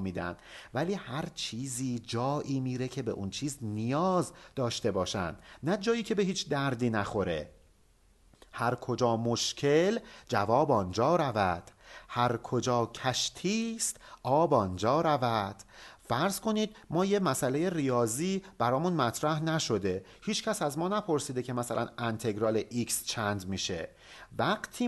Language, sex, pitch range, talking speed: Persian, male, 120-190 Hz, 125 wpm